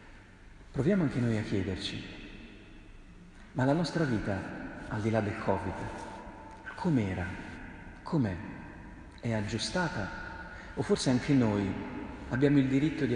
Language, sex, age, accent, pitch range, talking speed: Italian, male, 40-59, native, 105-125 Hz, 120 wpm